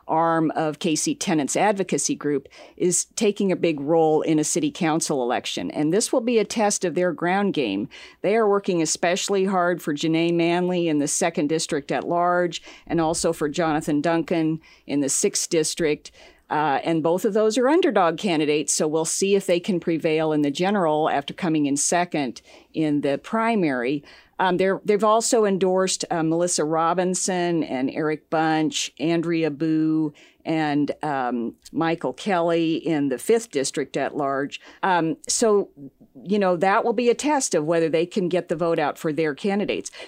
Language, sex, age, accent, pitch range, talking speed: English, female, 50-69, American, 155-190 Hz, 175 wpm